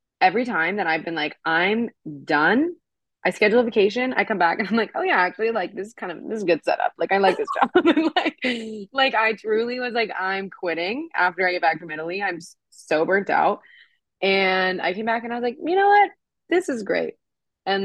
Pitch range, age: 180-235 Hz, 20-39